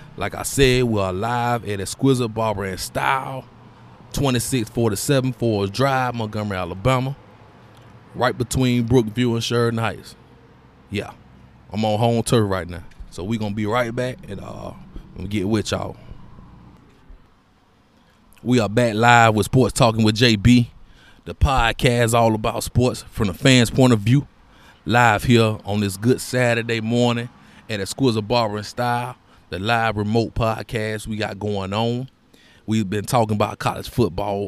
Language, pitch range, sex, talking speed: English, 105-125 Hz, male, 155 wpm